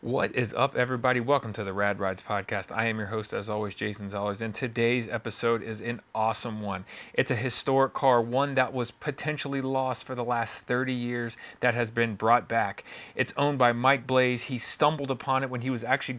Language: English